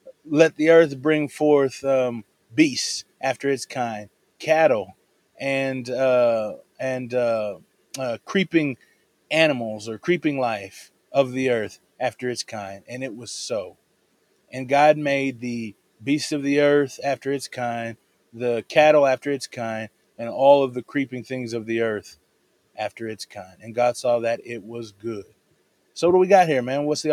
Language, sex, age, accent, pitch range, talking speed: English, male, 30-49, American, 120-150 Hz, 165 wpm